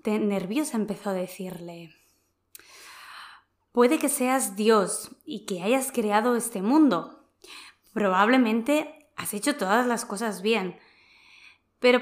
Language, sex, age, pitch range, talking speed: Spanish, female, 20-39, 185-255 Hz, 110 wpm